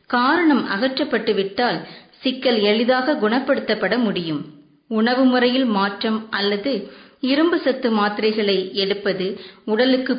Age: 20-39